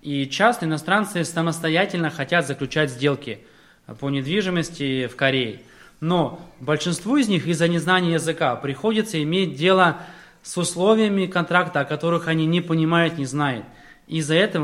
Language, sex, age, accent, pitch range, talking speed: Russian, male, 20-39, native, 150-180 Hz, 140 wpm